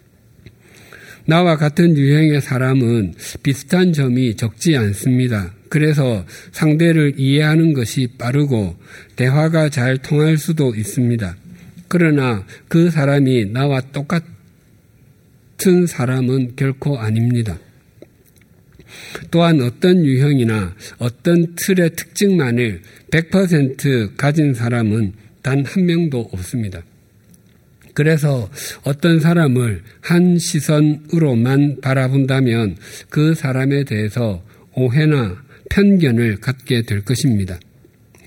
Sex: male